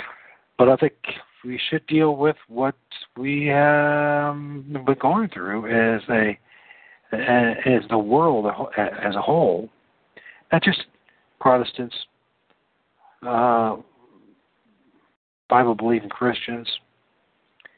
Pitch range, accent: 100-130 Hz, American